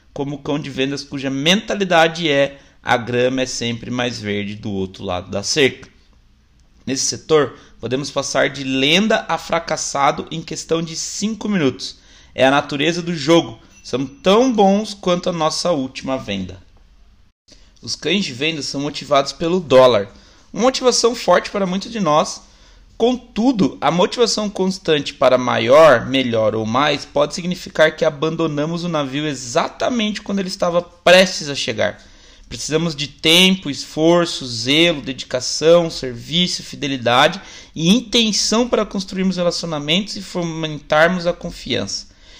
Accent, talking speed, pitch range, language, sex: Brazilian, 140 wpm, 130-185 Hz, Portuguese, male